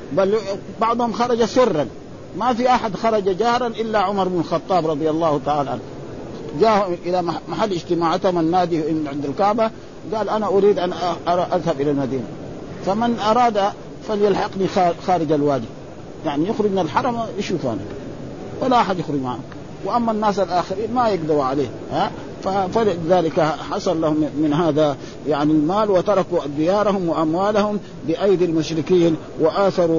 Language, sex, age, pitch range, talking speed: Arabic, male, 50-69, 160-205 Hz, 130 wpm